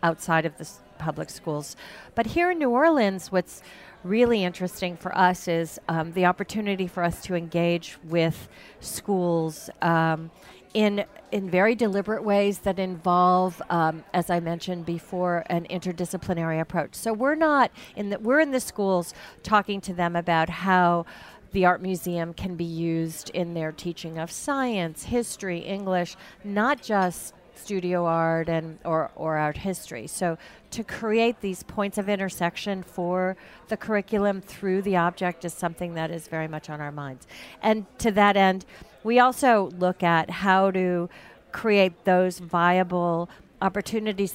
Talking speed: 155 wpm